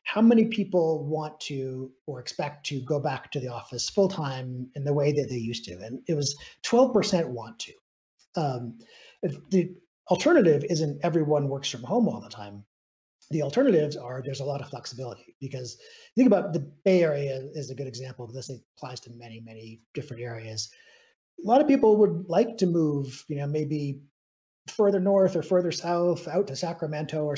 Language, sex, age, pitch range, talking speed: English, male, 30-49, 130-175 Hz, 190 wpm